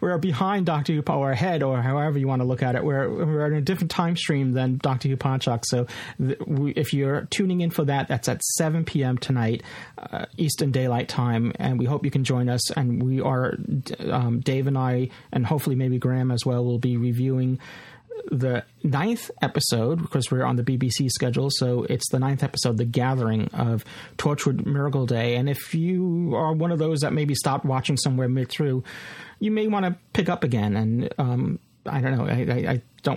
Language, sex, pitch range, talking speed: English, male, 125-150 Hz, 205 wpm